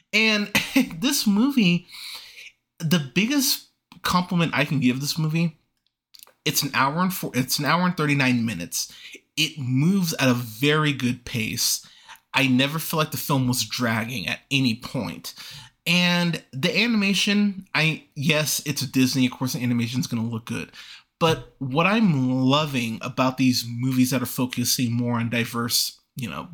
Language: English